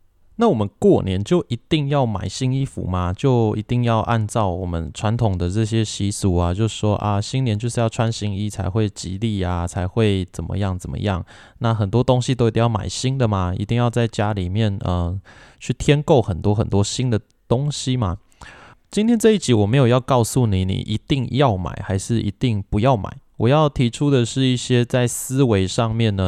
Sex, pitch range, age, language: male, 100-125 Hz, 20-39, Chinese